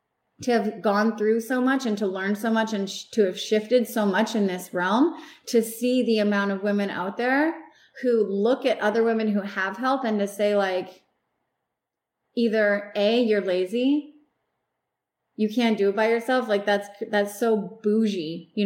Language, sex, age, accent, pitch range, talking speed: English, female, 20-39, American, 205-235 Hz, 185 wpm